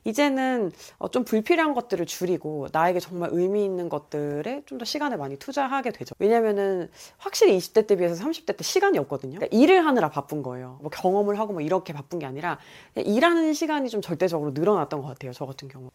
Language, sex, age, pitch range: Korean, female, 30-49, 150-245 Hz